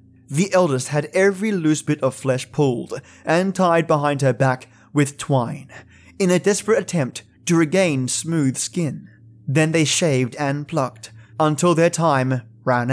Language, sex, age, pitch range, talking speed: English, male, 20-39, 125-170 Hz, 155 wpm